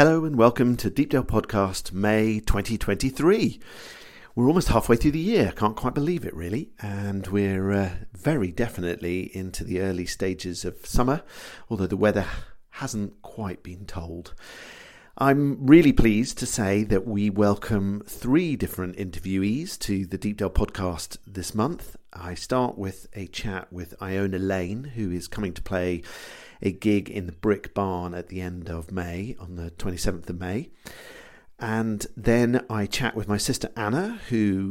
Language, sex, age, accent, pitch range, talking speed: English, male, 50-69, British, 90-110 Hz, 160 wpm